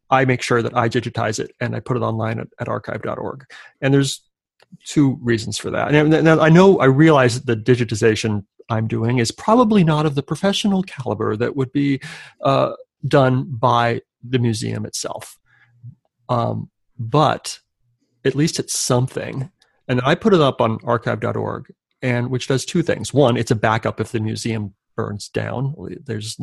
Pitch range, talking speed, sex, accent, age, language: 115-135 Hz, 170 wpm, male, American, 30-49, English